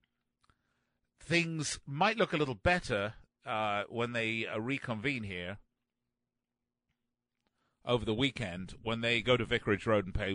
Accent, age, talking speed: British, 50-69, 135 wpm